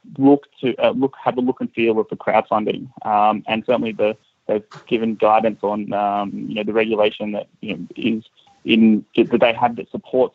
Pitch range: 110-125 Hz